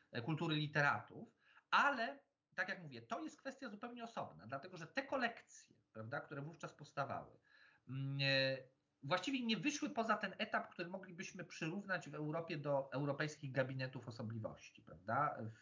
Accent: native